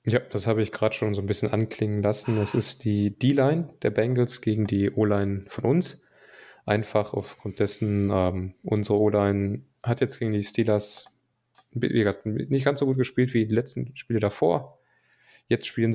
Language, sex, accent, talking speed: German, male, German, 170 wpm